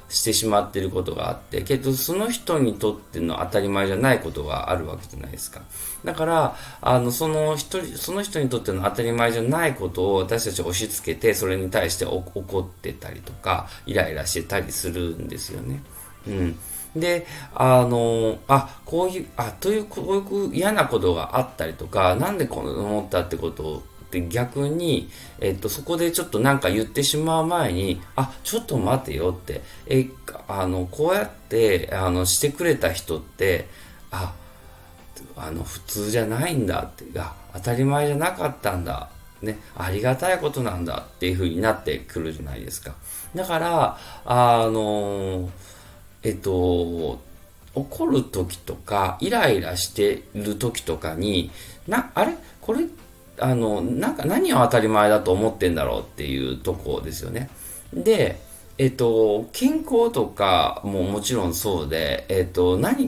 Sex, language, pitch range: male, Japanese, 90-130 Hz